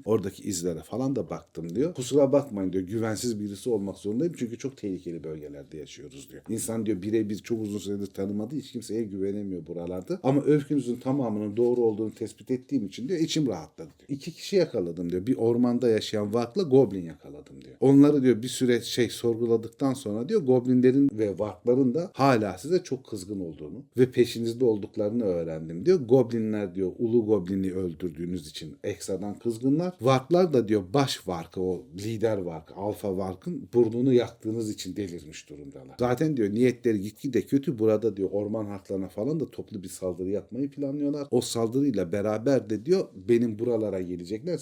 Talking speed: 165 wpm